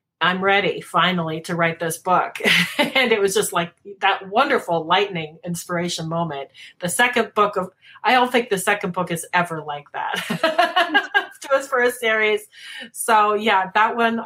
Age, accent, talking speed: 30-49, American, 170 wpm